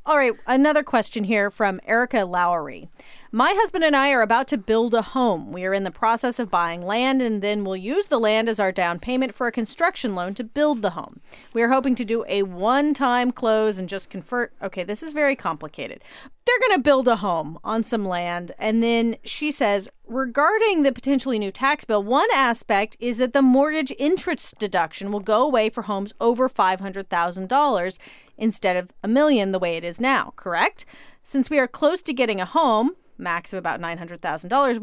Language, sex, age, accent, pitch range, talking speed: English, female, 30-49, American, 200-275 Hz, 205 wpm